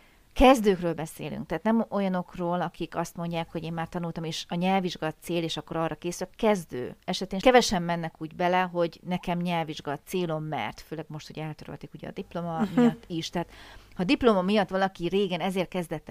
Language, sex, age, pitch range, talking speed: Hungarian, female, 30-49, 155-195 Hz, 185 wpm